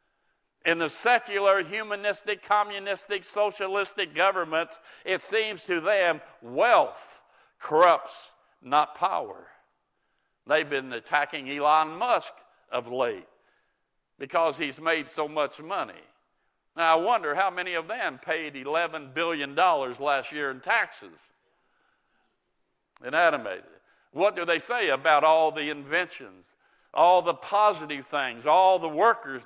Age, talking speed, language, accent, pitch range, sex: 60-79, 120 wpm, English, American, 155-200 Hz, male